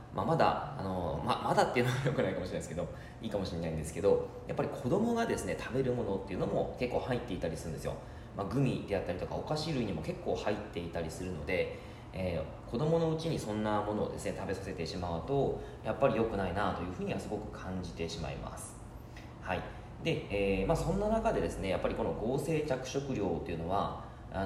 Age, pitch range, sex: 20-39, 90-135 Hz, male